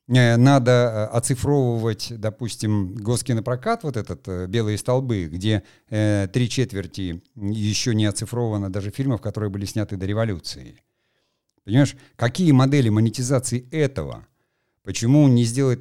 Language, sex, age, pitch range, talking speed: Russian, male, 50-69, 100-130 Hz, 115 wpm